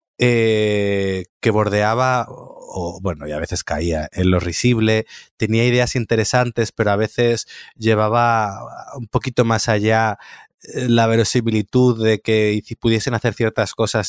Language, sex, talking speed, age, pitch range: Spanish, male, 135 wpm, 30-49, 100-125 Hz